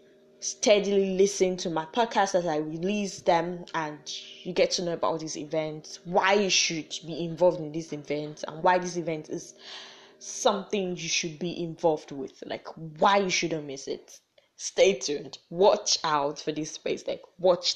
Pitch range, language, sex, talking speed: 165-195 Hz, English, female, 170 wpm